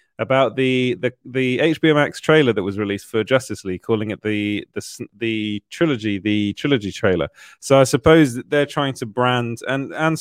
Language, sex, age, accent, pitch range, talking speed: English, male, 20-39, British, 105-135 Hz, 190 wpm